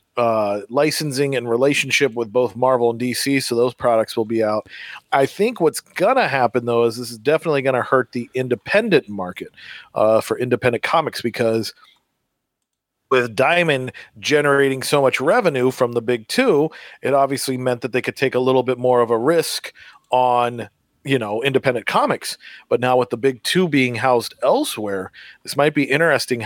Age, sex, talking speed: 40-59, male, 180 wpm